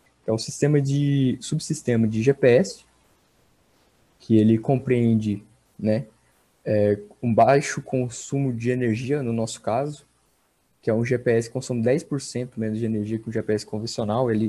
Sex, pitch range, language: male, 110-140 Hz, Portuguese